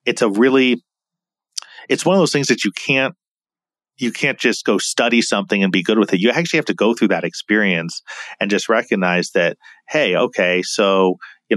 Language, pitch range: English, 95-140 Hz